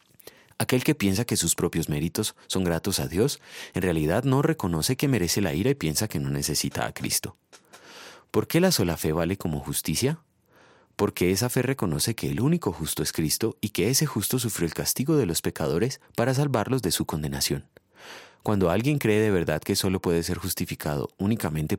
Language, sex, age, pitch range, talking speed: Spanish, male, 30-49, 80-115 Hz, 195 wpm